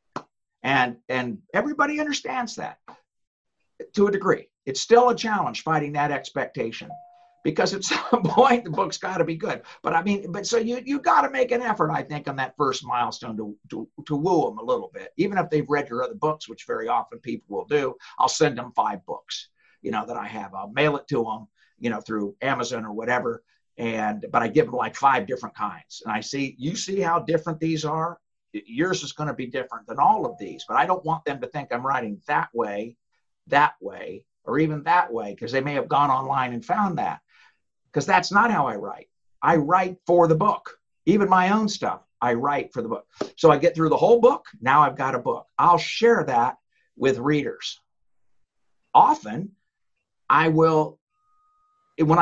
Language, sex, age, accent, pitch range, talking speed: English, male, 50-69, American, 145-235 Hz, 205 wpm